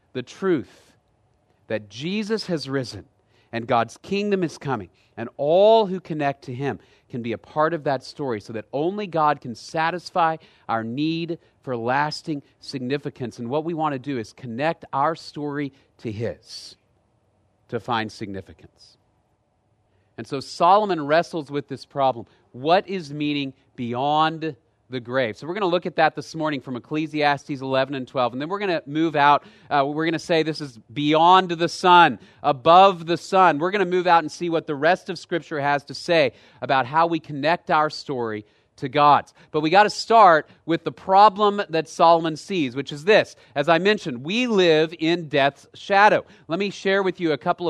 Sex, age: male, 40-59